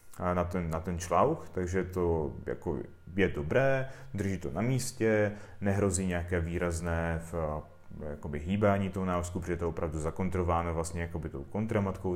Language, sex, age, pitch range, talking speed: Czech, male, 30-49, 85-105 Hz, 150 wpm